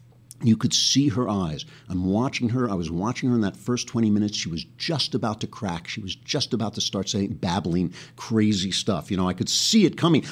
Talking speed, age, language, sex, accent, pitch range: 235 wpm, 50-69, English, male, American, 95-120 Hz